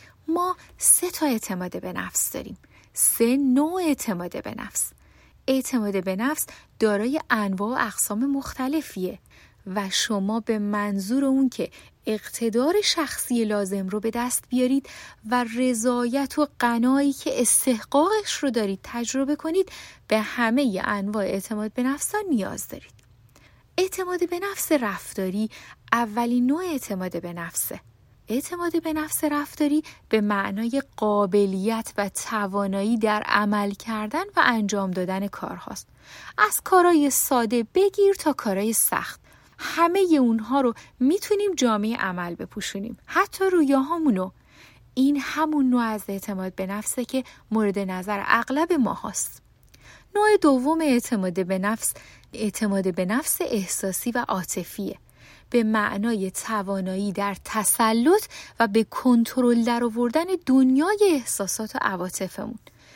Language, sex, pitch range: Persian, female, 205-285 Hz